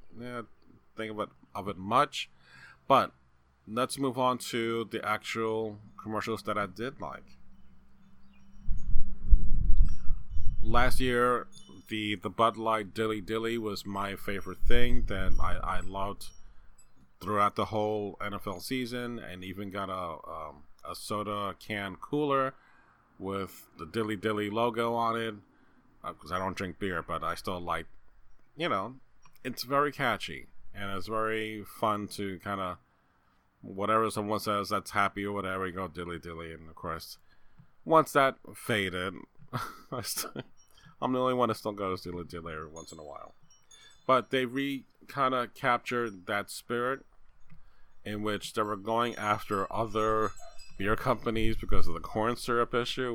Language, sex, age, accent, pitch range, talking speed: English, male, 30-49, American, 95-115 Hz, 145 wpm